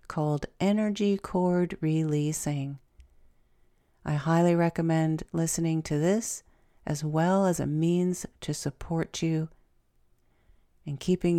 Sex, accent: female, American